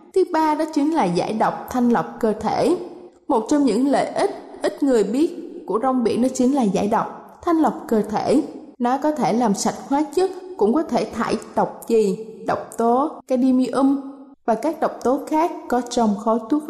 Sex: female